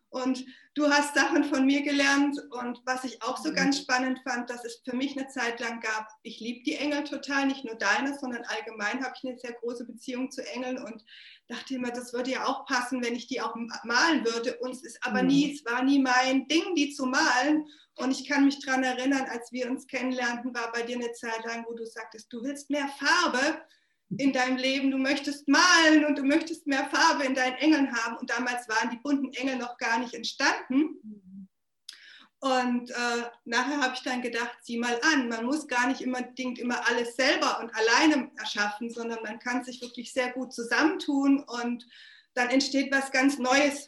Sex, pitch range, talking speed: female, 235-270 Hz, 205 wpm